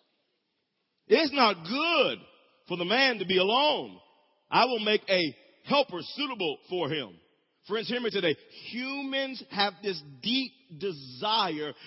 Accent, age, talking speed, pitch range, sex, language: American, 40-59, 130 wpm, 155-210 Hz, male, English